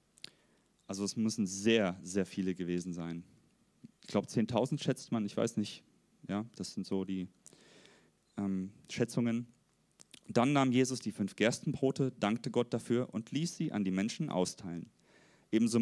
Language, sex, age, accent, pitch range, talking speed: German, male, 30-49, German, 110-155 Hz, 150 wpm